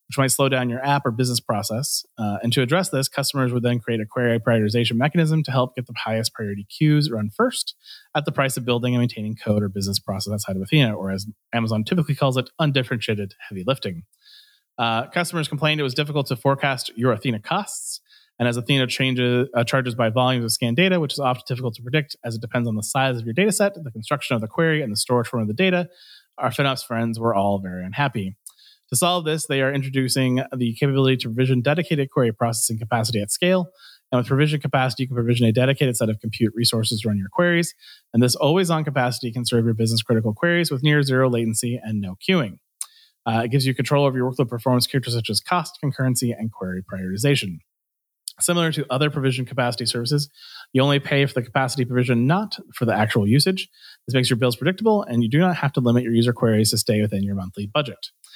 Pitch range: 115-145 Hz